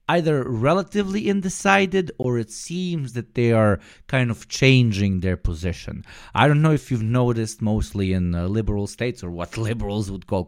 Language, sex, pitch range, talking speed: English, male, 90-110 Hz, 170 wpm